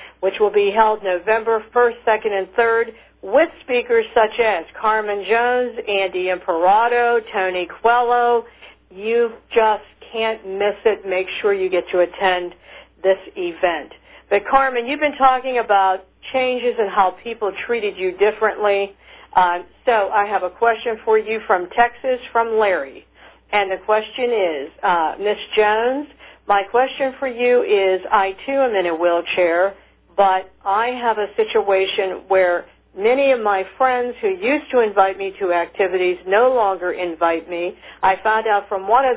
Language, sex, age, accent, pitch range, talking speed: English, female, 60-79, American, 185-235 Hz, 155 wpm